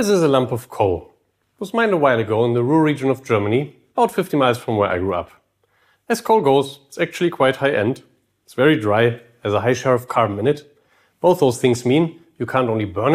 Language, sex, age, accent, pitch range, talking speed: Russian, male, 40-59, German, 120-165 Hz, 235 wpm